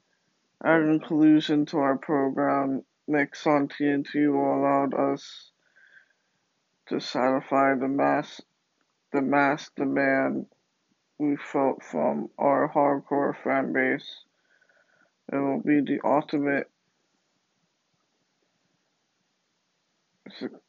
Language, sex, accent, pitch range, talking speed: English, male, American, 140-150 Hz, 85 wpm